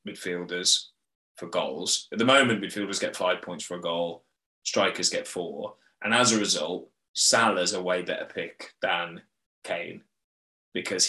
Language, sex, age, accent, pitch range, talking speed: English, male, 20-39, British, 90-110 Hz, 150 wpm